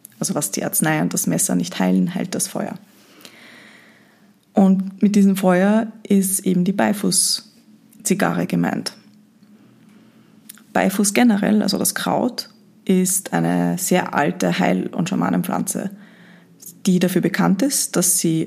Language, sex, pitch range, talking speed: German, female, 180-215 Hz, 125 wpm